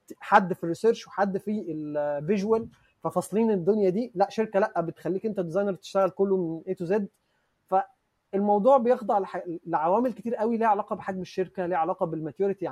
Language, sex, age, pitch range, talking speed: Arabic, male, 20-39, 170-225 Hz, 155 wpm